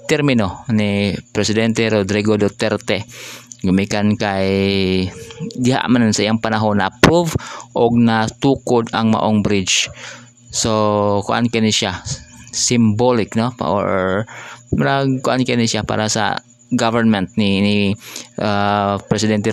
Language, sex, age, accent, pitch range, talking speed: Filipino, male, 20-39, native, 105-120 Hz, 115 wpm